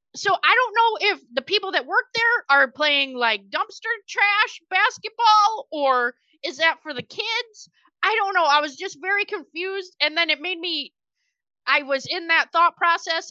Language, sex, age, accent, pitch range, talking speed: English, female, 30-49, American, 250-360 Hz, 180 wpm